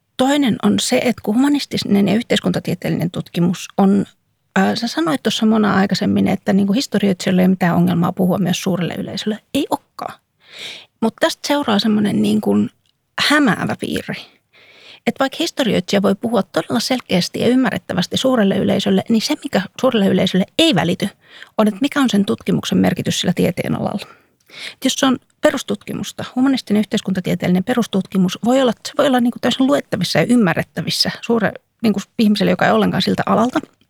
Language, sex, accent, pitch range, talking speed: Finnish, female, native, 190-245 Hz, 155 wpm